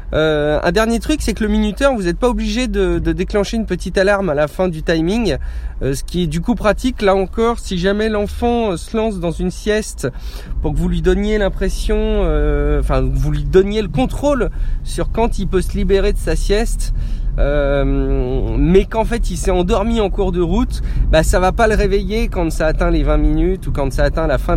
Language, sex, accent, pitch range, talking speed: French, male, French, 140-205 Hz, 220 wpm